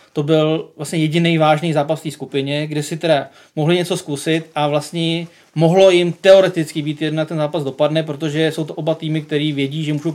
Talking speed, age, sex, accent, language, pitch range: 200 wpm, 20-39, male, native, Czech, 145-160 Hz